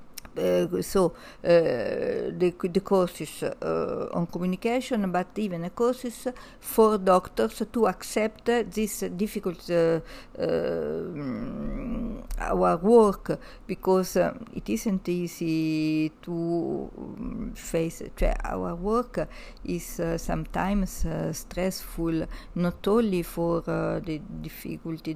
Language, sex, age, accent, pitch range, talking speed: Polish, female, 50-69, Italian, 165-210 Hz, 105 wpm